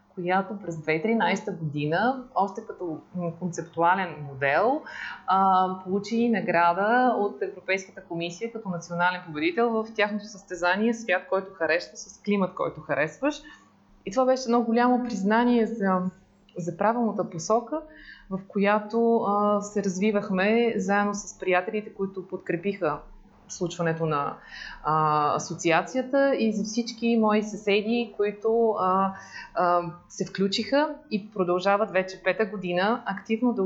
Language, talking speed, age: Bulgarian, 110 wpm, 20-39